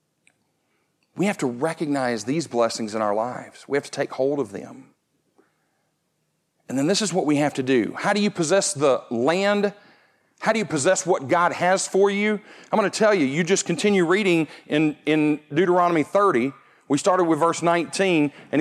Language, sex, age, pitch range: English, male, 40-59, 155-200 Hz